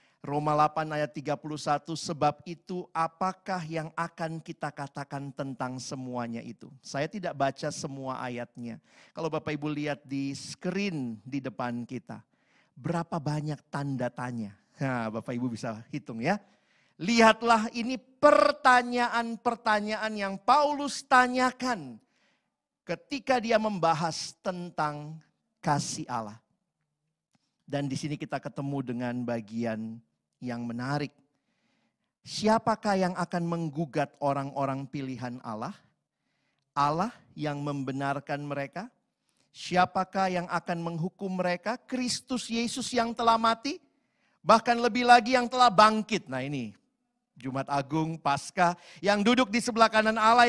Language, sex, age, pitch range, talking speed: Indonesian, male, 50-69, 140-225 Hz, 115 wpm